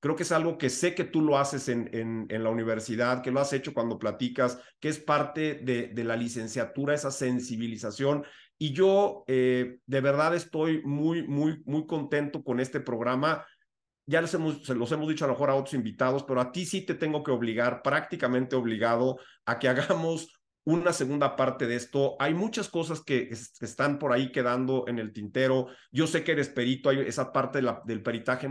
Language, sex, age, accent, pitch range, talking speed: Spanish, male, 40-59, Mexican, 125-155 Hz, 200 wpm